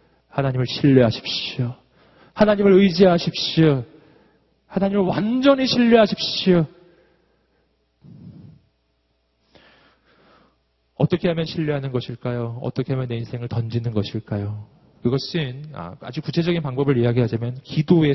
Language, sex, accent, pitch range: Korean, male, native, 120-195 Hz